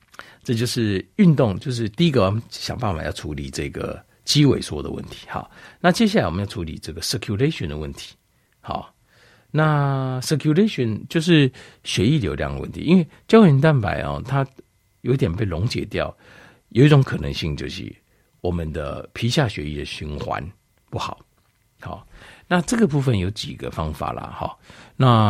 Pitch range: 85-140 Hz